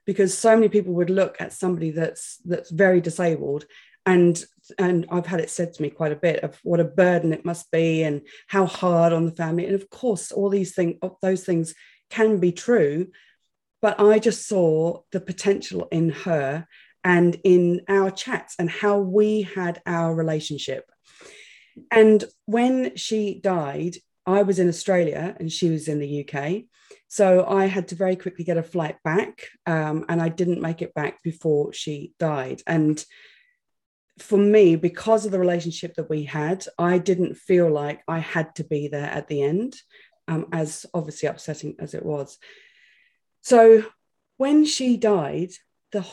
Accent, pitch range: British, 165-200 Hz